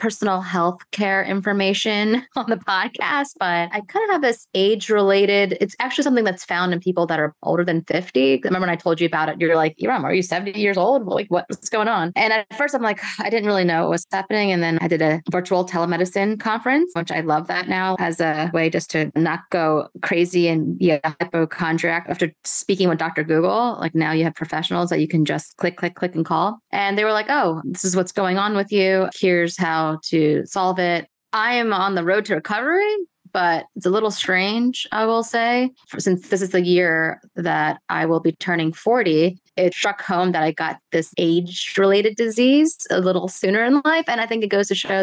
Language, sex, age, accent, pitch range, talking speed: English, female, 20-39, American, 170-205 Hz, 220 wpm